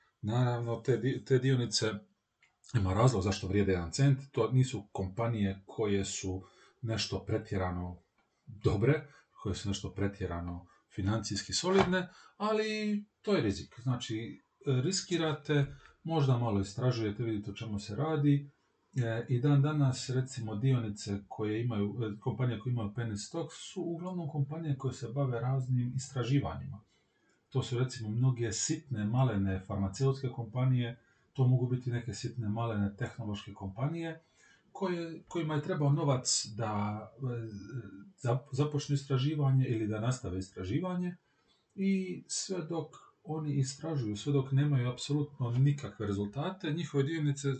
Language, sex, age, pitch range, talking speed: Croatian, male, 40-59, 105-140 Hz, 125 wpm